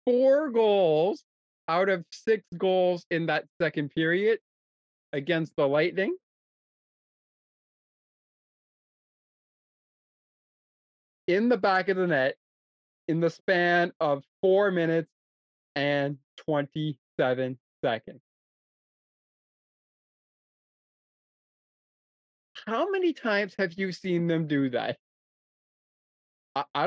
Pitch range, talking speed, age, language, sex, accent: 155-225 Hz, 85 wpm, 20-39, English, male, American